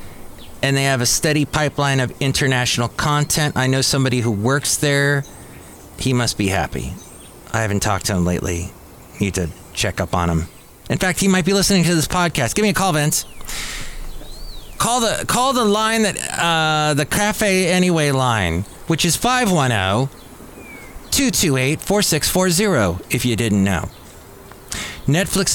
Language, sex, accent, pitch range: English, male, American, 115-155 Hz